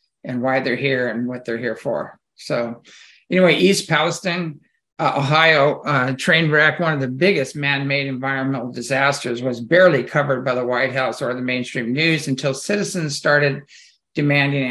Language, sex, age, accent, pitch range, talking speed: English, male, 50-69, American, 130-155 Hz, 165 wpm